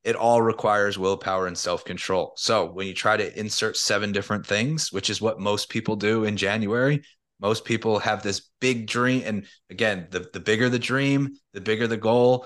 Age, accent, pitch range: 30-49, American, 100-125 Hz